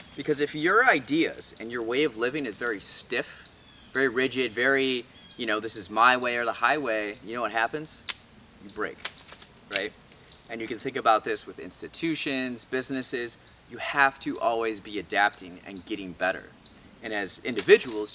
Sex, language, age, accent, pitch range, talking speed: male, English, 20-39, American, 110-135 Hz, 170 wpm